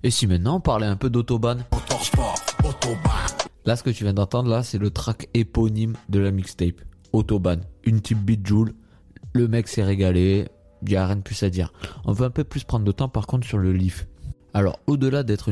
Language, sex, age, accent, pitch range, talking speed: French, male, 20-39, French, 100-130 Hz, 205 wpm